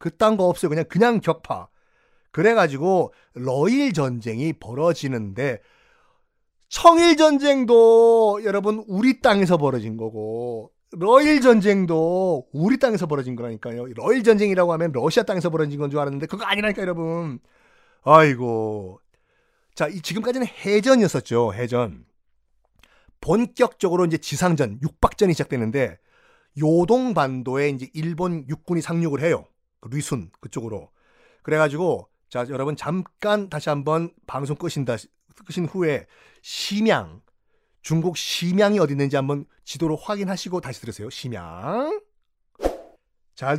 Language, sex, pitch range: Korean, male, 135-205 Hz